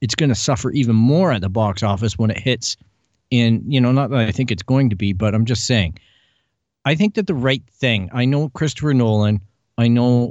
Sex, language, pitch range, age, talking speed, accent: male, English, 105-135 Hz, 40-59, 235 wpm, American